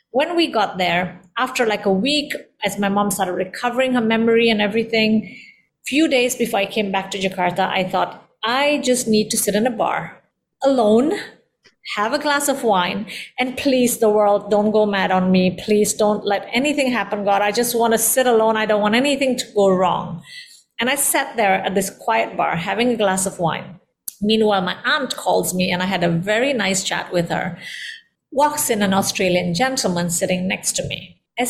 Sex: female